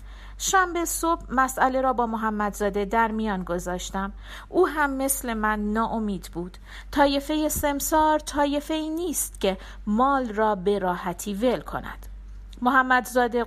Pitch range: 215-325 Hz